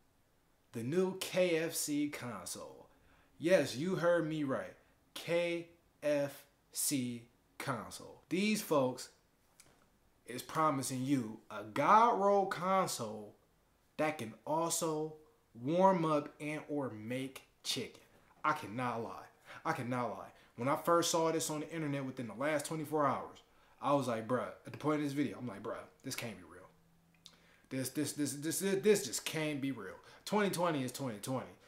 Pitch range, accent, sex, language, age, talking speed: 130-170 Hz, American, male, English, 20-39, 150 wpm